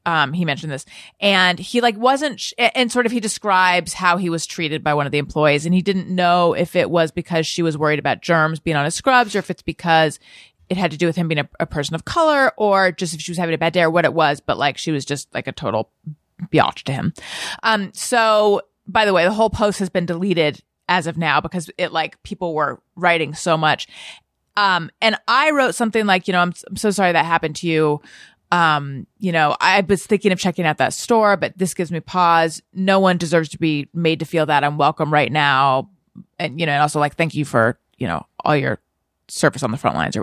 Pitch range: 160-220 Hz